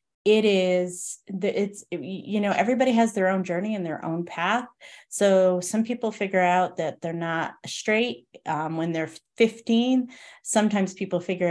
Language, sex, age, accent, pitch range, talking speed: English, female, 30-49, American, 170-220 Hz, 155 wpm